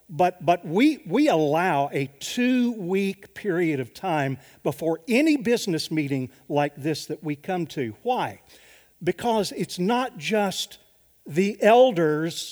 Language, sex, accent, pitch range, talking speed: English, male, American, 135-195 Hz, 130 wpm